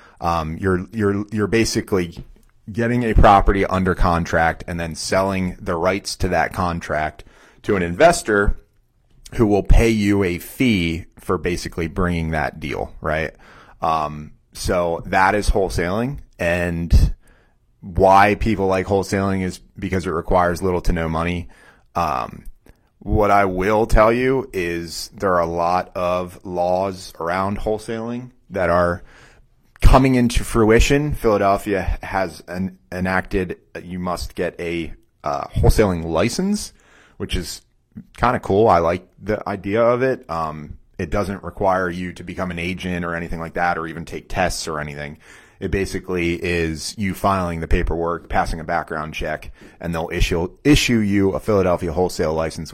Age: 30-49